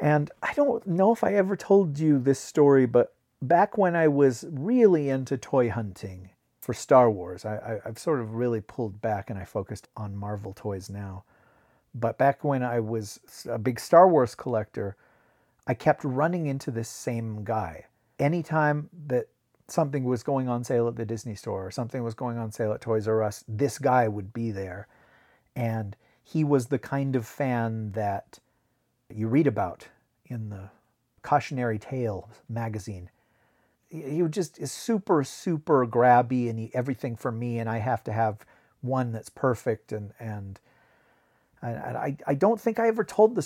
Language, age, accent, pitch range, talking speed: English, 40-59, American, 110-140 Hz, 175 wpm